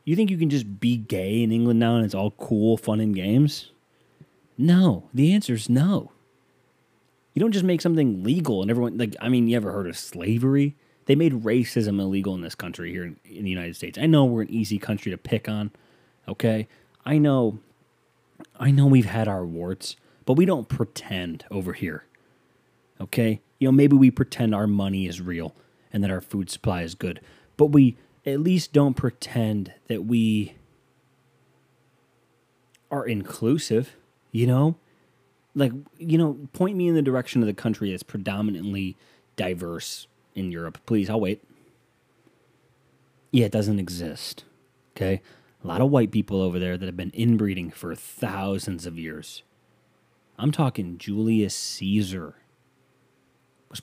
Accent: American